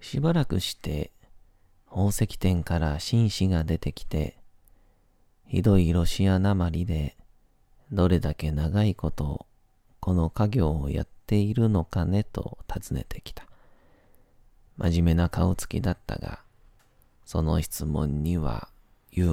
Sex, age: male, 40-59